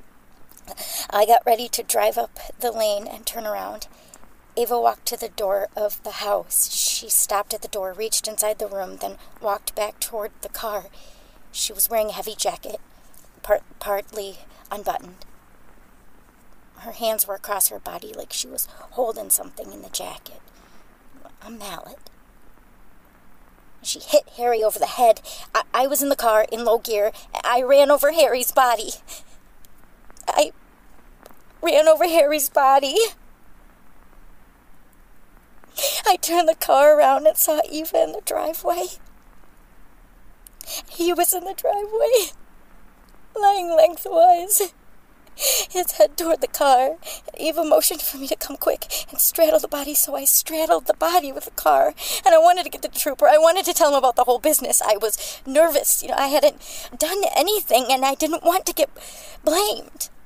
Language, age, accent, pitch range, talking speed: English, 40-59, American, 215-325 Hz, 155 wpm